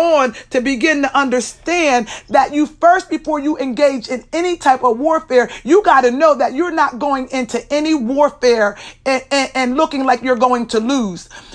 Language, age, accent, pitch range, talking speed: English, 40-59, American, 255-315 Hz, 185 wpm